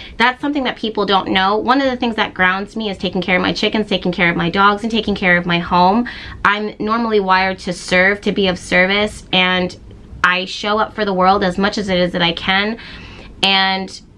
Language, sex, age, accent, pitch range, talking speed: English, female, 20-39, American, 185-220 Hz, 235 wpm